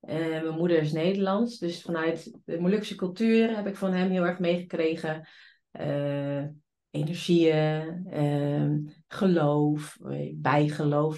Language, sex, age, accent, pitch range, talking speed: Dutch, female, 30-49, Dutch, 155-195 Hz, 120 wpm